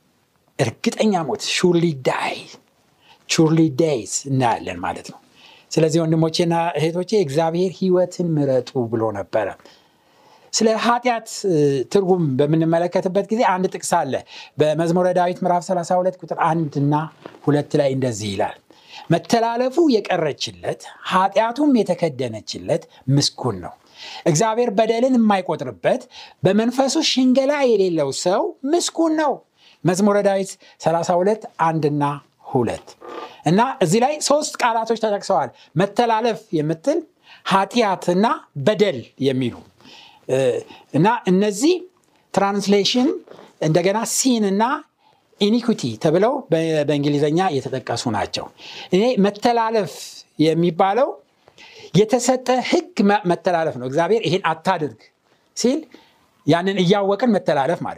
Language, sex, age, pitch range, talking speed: Amharic, male, 60-79, 160-230 Hz, 85 wpm